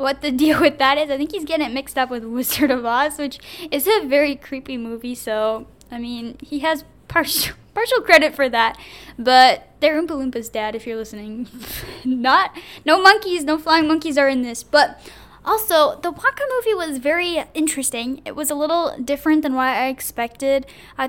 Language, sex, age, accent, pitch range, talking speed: English, female, 10-29, American, 245-310 Hz, 195 wpm